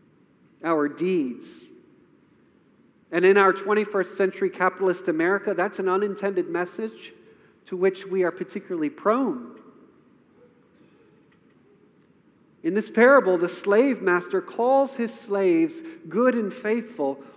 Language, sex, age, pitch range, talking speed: English, male, 40-59, 185-245 Hz, 105 wpm